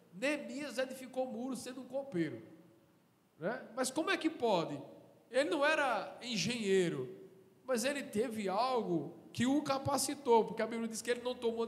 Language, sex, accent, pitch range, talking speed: Portuguese, male, Brazilian, 180-235 Hz, 165 wpm